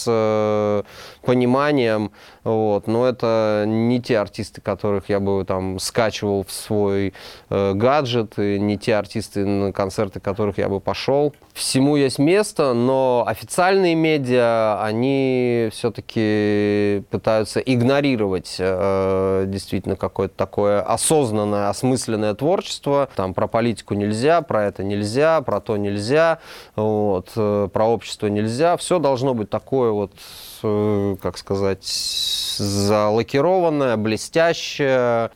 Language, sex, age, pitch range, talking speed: Russian, male, 20-39, 100-120 Hz, 115 wpm